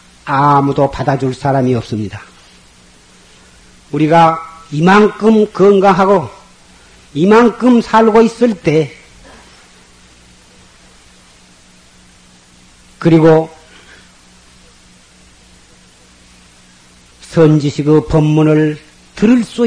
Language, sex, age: Korean, male, 40-59